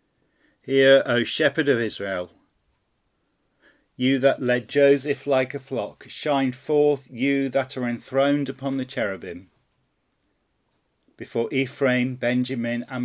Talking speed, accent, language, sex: 115 wpm, British, English, male